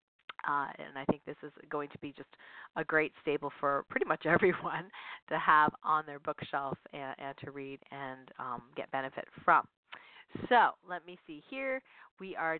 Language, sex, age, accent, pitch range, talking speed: English, female, 40-59, American, 145-190 Hz, 180 wpm